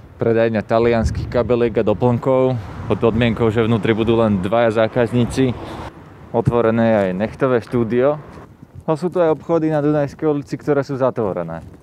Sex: male